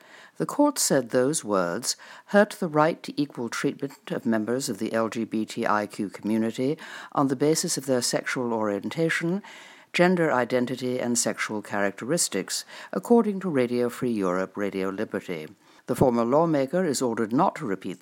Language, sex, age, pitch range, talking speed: English, female, 60-79, 115-170 Hz, 145 wpm